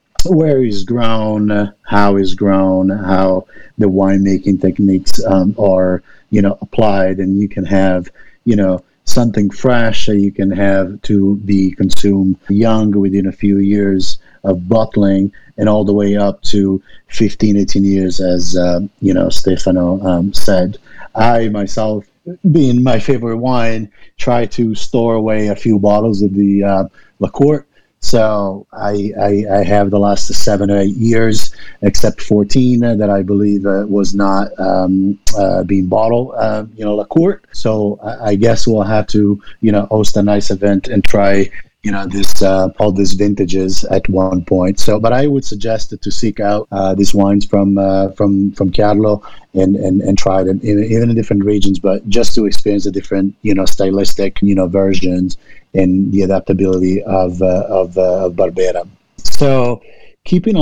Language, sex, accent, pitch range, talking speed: English, male, American, 95-110 Hz, 165 wpm